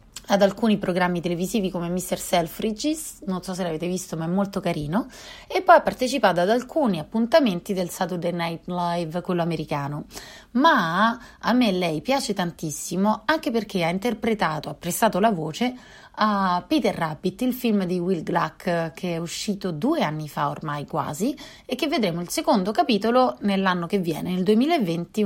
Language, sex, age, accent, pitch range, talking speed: Italian, female, 30-49, native, 170-225 Hz, 165 wpm